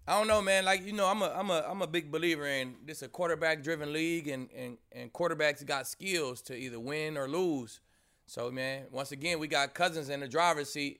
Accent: American